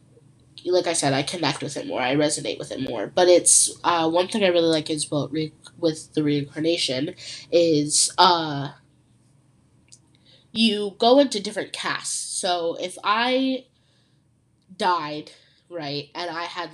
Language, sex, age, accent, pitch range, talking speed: English, female, 10-29, American, 150-190 Hz, 150 wpm